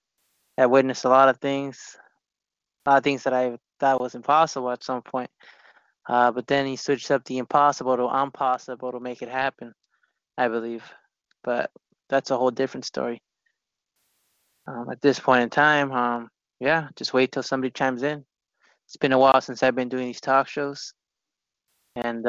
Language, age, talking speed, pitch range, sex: English, 20-39, 180 wpm, 125-135 Hz, male